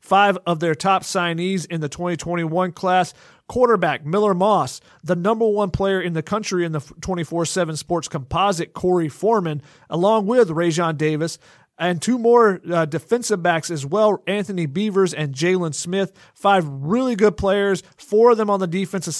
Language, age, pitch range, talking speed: English, 40-59, 165-210 Hz, 165 wpm